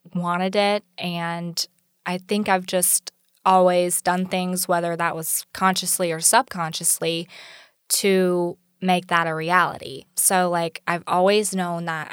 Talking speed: 135 wpm